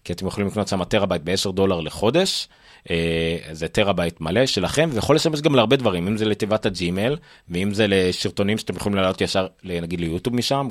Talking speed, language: 185 wpm, Hebrew